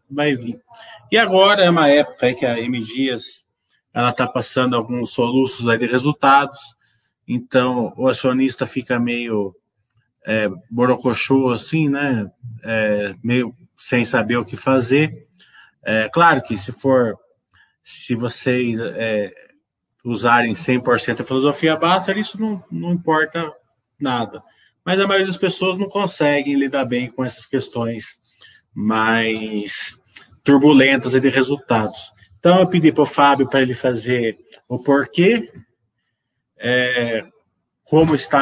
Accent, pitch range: Brazilian, 120-150 Hz